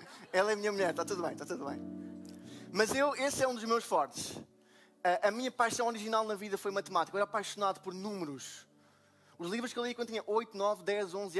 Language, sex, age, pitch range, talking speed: Portuguese, male, 20-39, 155-220 Hz, 230 wpm